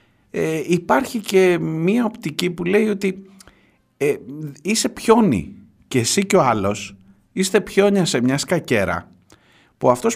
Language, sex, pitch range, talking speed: Greek, male, 105-175 Hz, 135 wpm